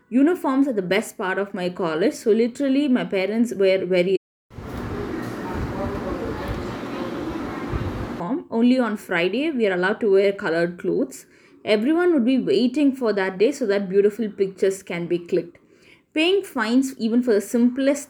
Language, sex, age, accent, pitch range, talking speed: English, female, 20-39, Indian, 185-240 Hz, 145 wpm